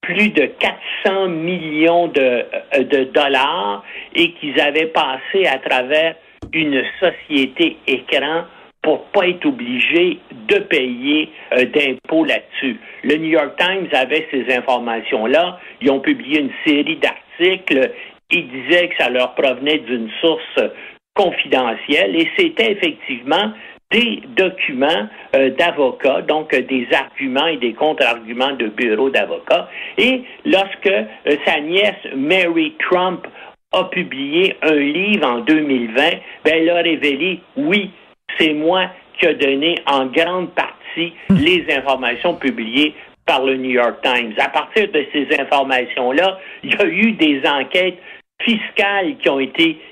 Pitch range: 140-210 Hz